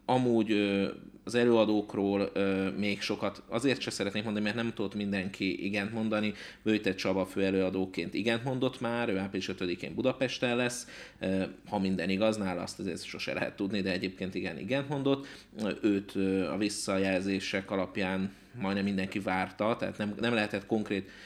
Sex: male